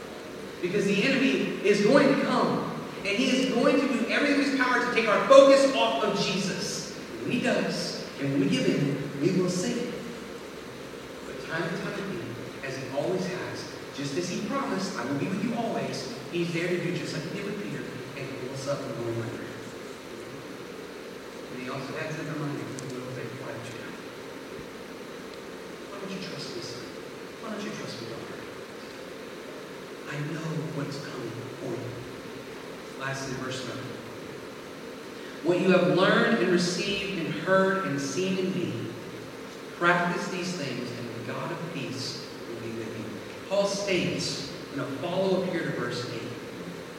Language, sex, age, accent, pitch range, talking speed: English, male, 40-59, American, 145-210 Hz, 175 wpm